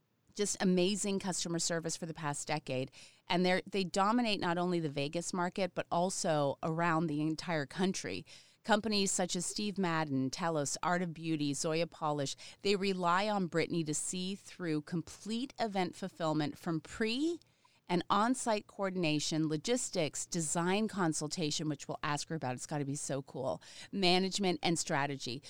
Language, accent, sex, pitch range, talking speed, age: English, American, female, 155-195 Hz, 155 wpm, 30-49